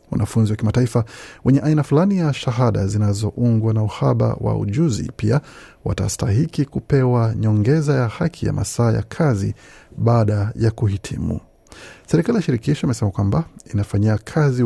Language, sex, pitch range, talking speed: Swahili, male, 105-140 Hz, 135 wpm